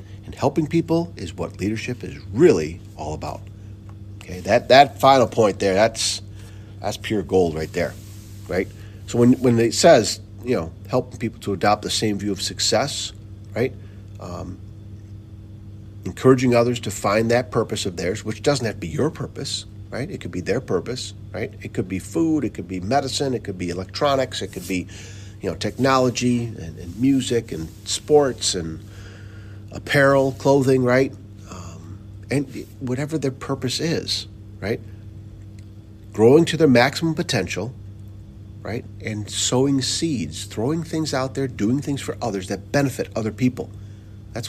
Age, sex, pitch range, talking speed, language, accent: 50-69, male, 100-125 Hz, 160 wpm, English, American